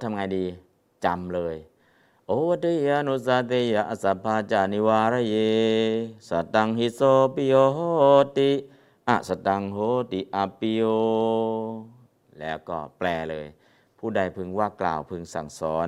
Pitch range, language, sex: 90-115 Hz, Thai, male